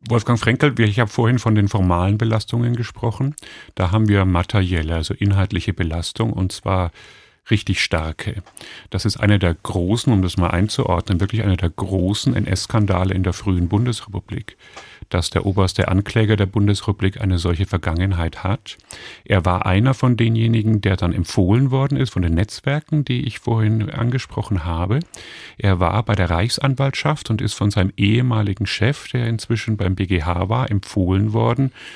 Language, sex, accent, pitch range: German, male, German, 95-120 Hz